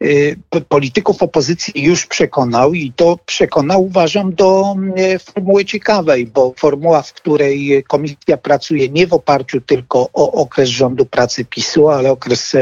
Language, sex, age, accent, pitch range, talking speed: Polish, male, 50-69, native, 130-155 Hz, 135 wpm